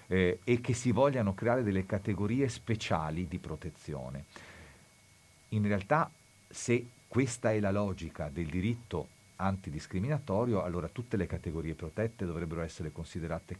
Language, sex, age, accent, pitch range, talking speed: Italian, male, 40-59, native, 90-130 Hz, 130 wpm